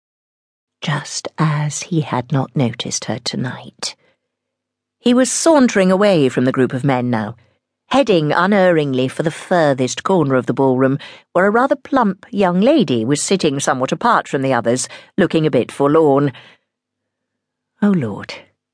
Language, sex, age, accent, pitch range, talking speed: English, female, 50-69, British, 130-190 Hz, 145 wpm